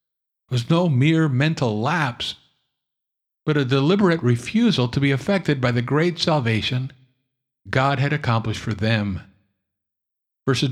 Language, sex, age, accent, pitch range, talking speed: English, male, 50-69, American, 105-140 Hz, 125 wpm